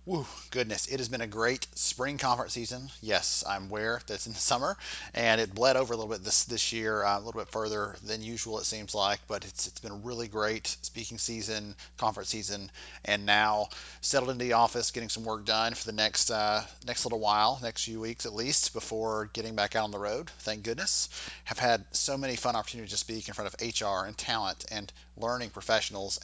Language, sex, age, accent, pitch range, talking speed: English, male, 30-49, American, 100-120 Hz, 220 wpm